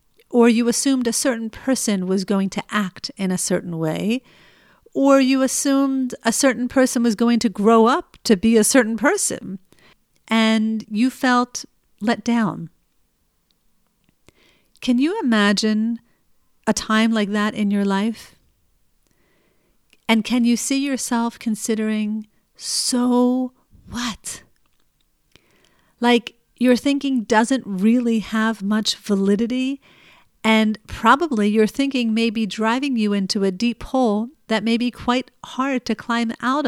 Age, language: 40-59, English